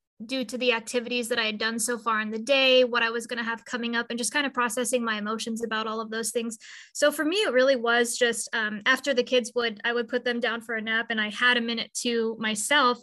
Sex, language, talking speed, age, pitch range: female, English, 275 wpm, 20-39, 225-255 Hz